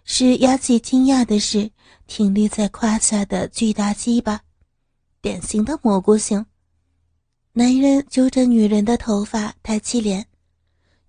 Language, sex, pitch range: Chinese, female, 200-235 Hz